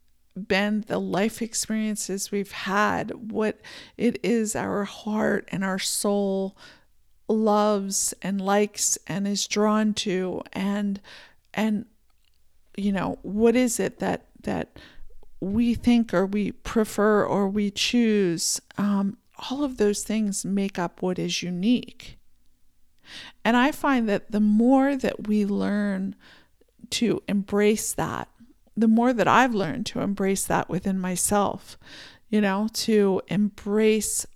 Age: 50-69